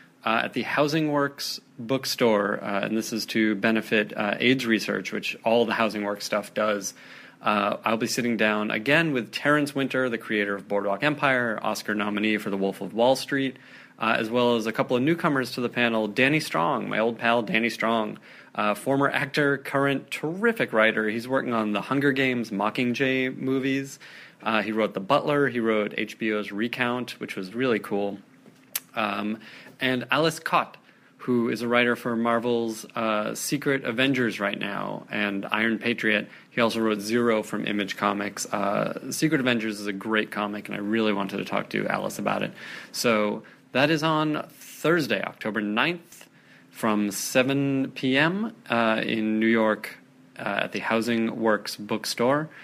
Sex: male